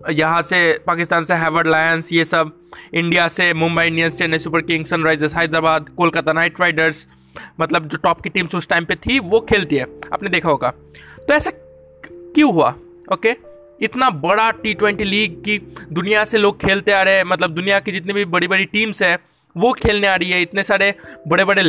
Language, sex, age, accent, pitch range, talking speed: Hindi, male, 20-39, native, 165-220 Hz, 195 wpm